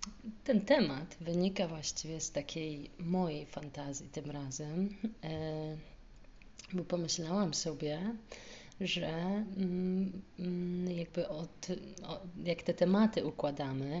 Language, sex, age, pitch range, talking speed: Polish, female, 30-49, 150-190 Hz, 90 wpm